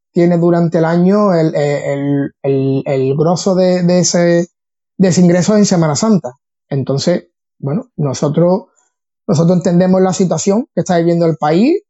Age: 20-39